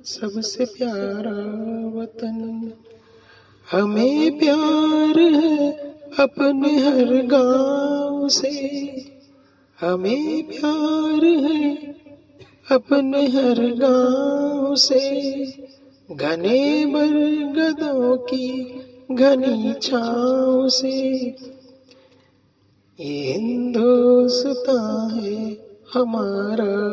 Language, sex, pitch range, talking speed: Urdu, male, 230-285 Hz, 60 wpm